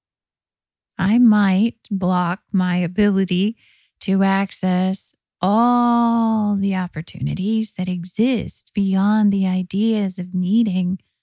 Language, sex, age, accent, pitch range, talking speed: English, female, 30-49, American, 165-205 Hz, 90 wpm